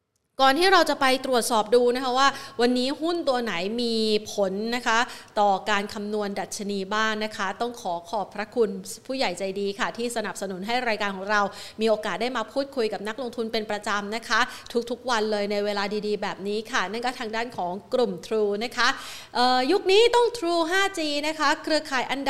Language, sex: Thai, female